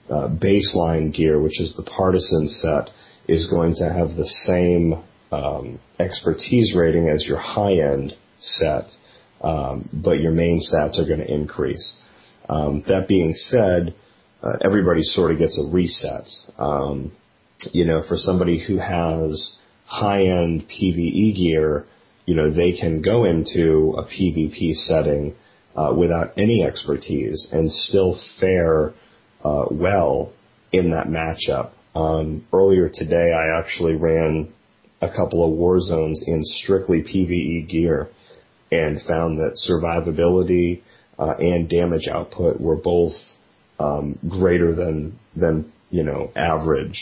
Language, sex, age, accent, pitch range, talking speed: English, male, 40-59, American, 80-90 Hz, 130 wpm